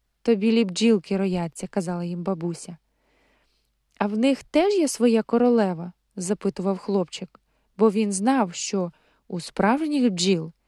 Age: 20-39